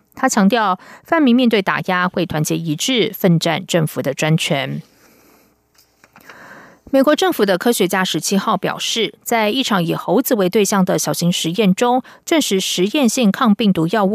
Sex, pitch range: female, 175-230 Hz